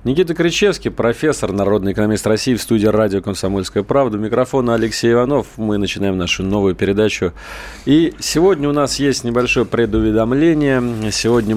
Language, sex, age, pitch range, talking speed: Russian, male, 30-49, 95-125 Hz, 145 wpm